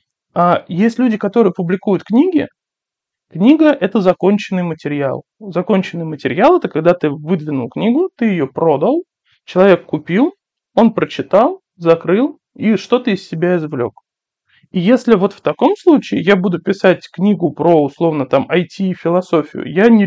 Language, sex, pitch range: Russian, male, 165-205 Hz